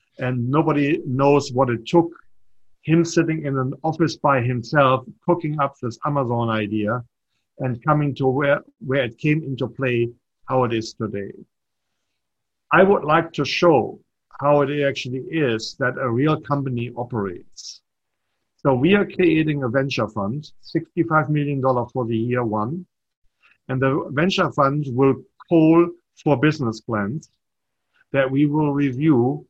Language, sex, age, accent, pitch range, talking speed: English, male, 50-69, German, 125-160 Hz, 145 wpm